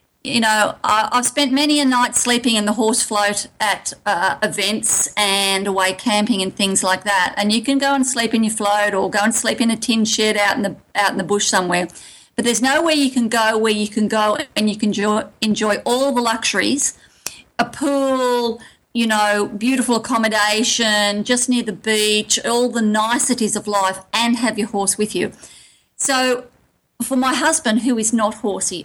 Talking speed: 195 wpm